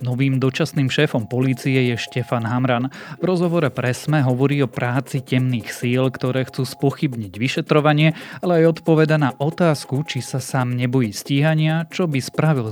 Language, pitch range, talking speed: Slovak, 115-140 Hz, 155 wpm